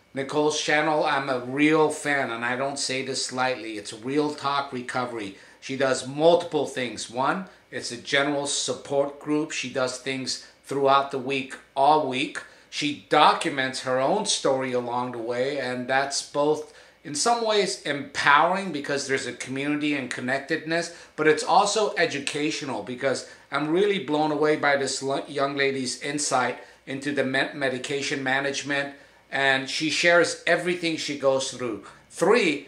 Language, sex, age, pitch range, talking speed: English, male, 50-69, 135-155 Hz, 150 wpm